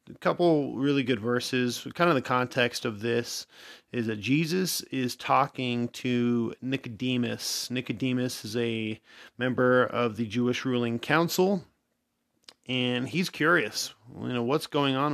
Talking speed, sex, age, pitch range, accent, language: 140 wpm, male, 30-49, 120-130 Hz, American, English